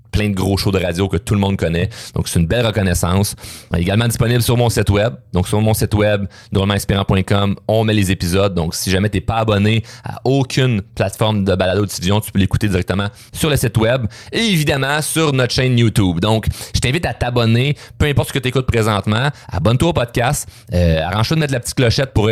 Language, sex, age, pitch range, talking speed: French, male, 30-49, 100-120 Hz, 220 wpm